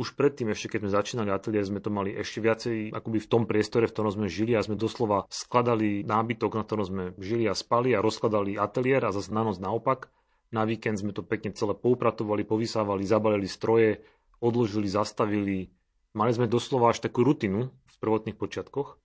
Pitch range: 100-115 Hz